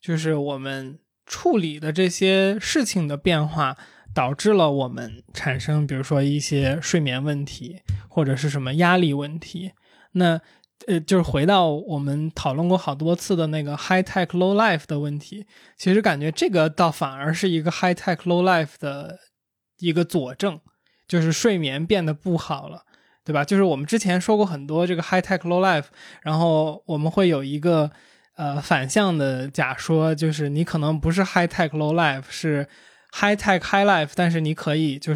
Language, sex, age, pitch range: Chinese, male, 20-39, 145-175 Hz